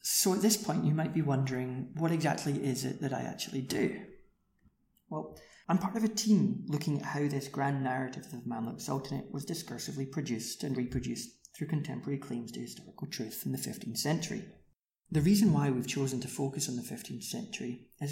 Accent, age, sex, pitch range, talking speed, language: British, 30-49, male, 135-185 Hz, 190 wpm, English